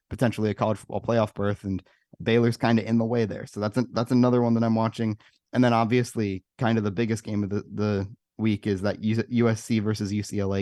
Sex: male